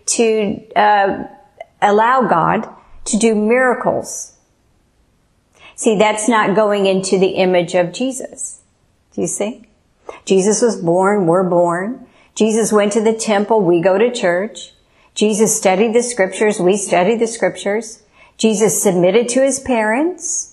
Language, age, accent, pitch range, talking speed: English, 50-69, American, 185-225 Hz, 135 wpm